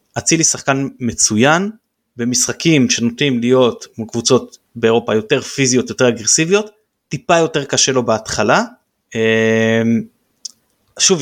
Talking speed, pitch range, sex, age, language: 100 wpm, 115-145 Hz, male, 20-39, Hebrew